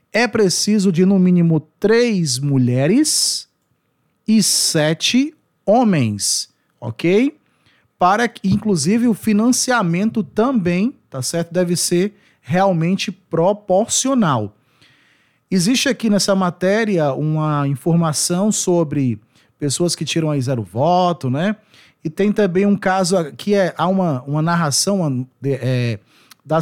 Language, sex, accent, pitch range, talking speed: Portuguese, male, Brazilian, 145-185 Hz, 110 wpm